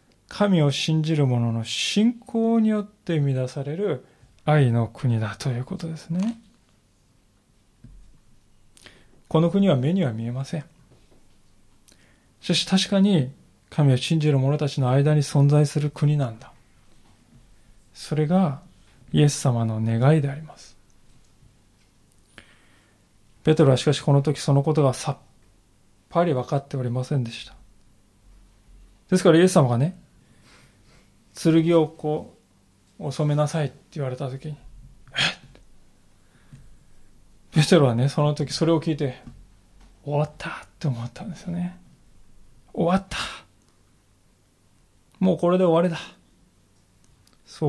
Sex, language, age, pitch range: male, Japanese, 20-39, 105-160 Hz